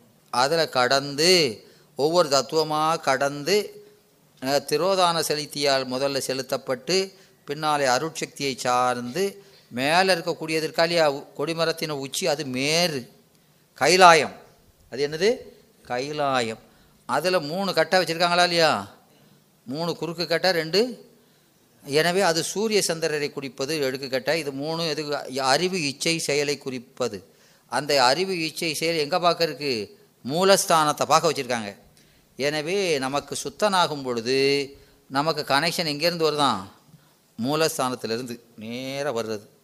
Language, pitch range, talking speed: Tamil, 130-170 Hz, 95 wpm